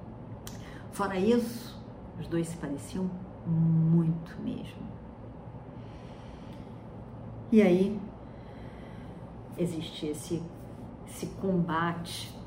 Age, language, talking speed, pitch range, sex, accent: 50-69, Portuguese, 65 wpm, 140-195 Hz, female, Brazilian